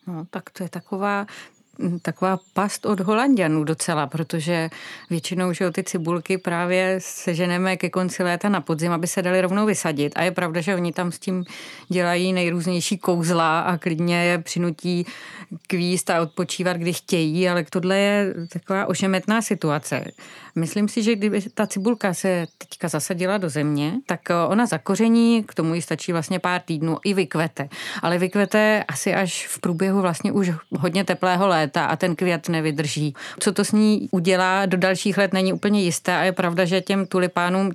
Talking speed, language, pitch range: 170 wpm, Czech, 170-190 Hz